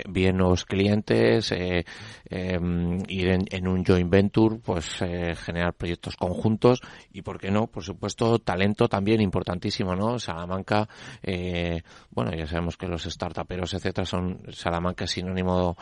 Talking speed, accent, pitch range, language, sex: 145 wpm, Spanish, 90-110 Hz, Spanish, male